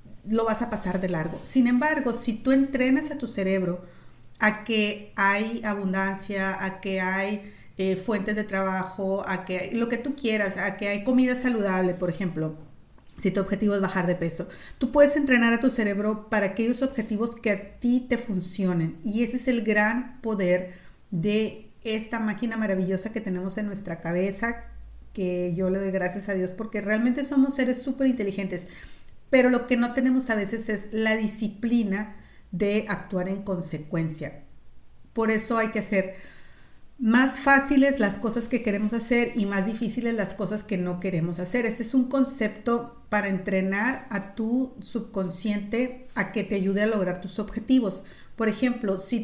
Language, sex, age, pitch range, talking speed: Spanish, female, 40-59, 190-235 Hz, 175 wpm